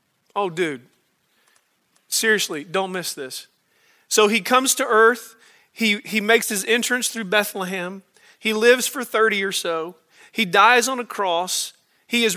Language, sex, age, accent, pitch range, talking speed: English, male, 40-59, American, 190-245 Hz, 150 wpm